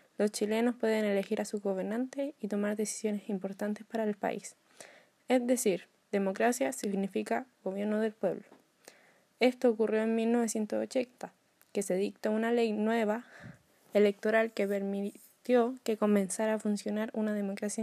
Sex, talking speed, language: female, 135 wpm, Spanish